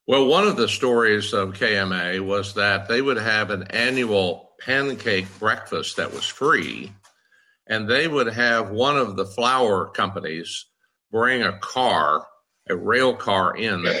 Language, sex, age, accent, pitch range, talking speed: English, male, 60-79, American, 100-125 Hz, 155 wpm